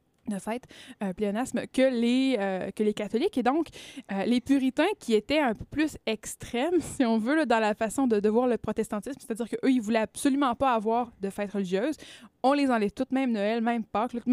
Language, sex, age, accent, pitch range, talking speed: French, female, 20-39, Canadian, 215-260 Hz, 210 wpm